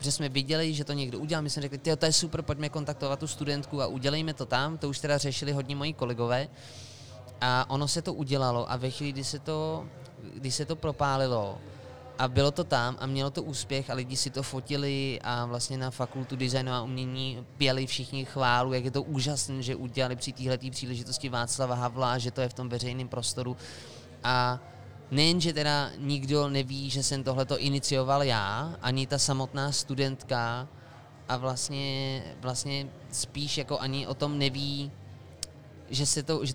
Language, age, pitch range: Czech, 20-39, 125-140 Hz